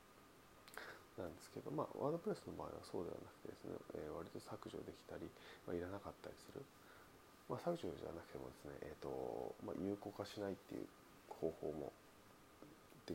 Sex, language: male, Japanese